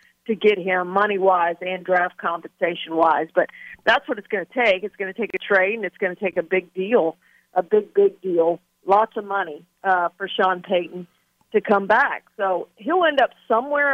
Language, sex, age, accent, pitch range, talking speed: English, female, 50-69, American, 185-225 Hz, 200 wpm